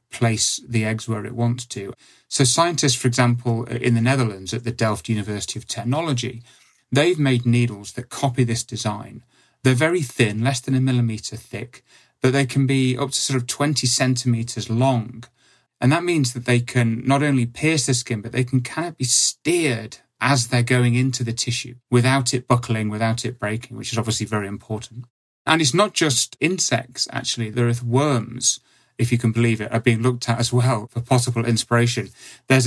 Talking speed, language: 195 wpm, English